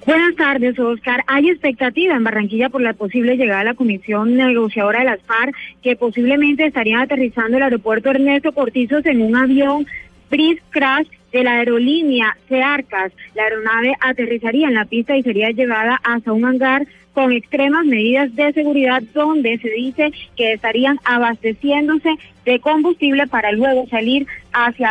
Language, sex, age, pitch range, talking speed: Spanish, female, 20-39, 230-280 Hz, 155 wpm